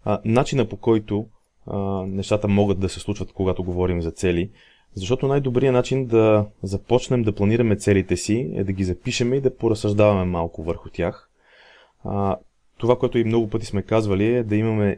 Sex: male